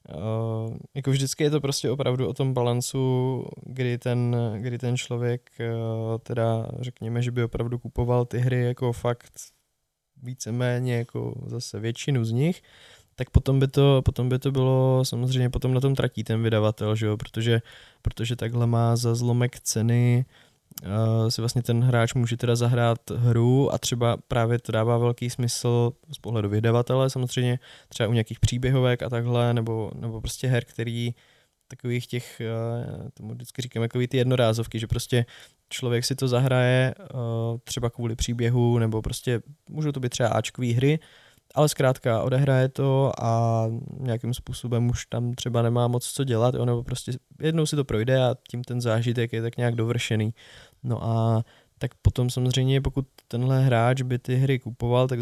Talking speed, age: 165 wpm, 20-39